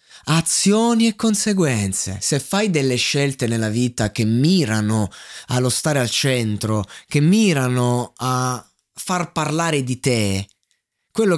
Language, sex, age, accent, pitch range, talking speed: Italian, male, 20-39, native, 140-200 Hz, 120 wpm